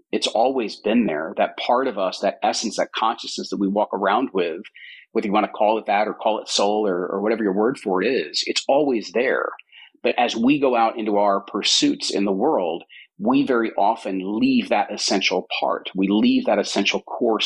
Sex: male